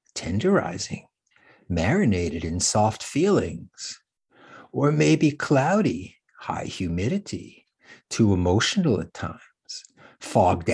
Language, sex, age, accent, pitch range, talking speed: English, male, 60-79, American, 90-140 Hz, 85 wpm